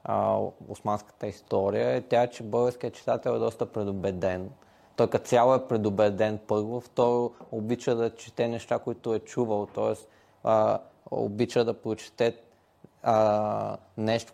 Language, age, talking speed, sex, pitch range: Bulgarian, 20-39, 120 wpm, male, 105-120 Hz